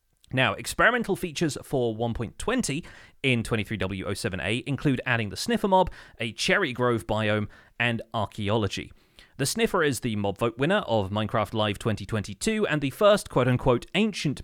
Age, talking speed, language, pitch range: 30-49, 145 wpm, English, 110-150 Hz